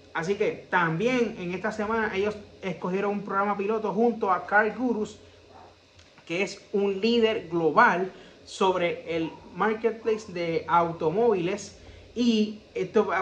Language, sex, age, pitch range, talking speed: Spanish, male, 30-49, 180-220 Hz, 130 wpm